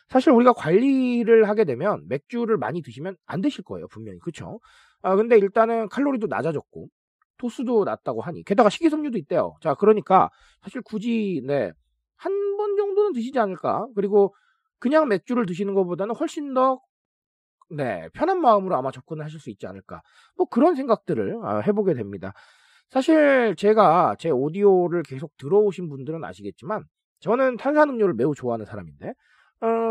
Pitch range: 165-245 Hz